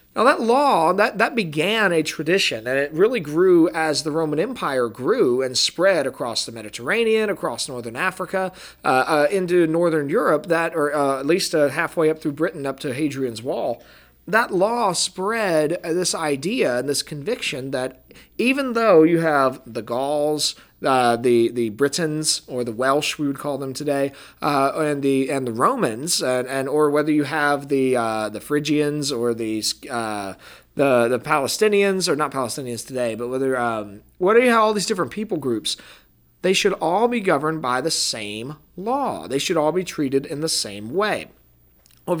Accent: American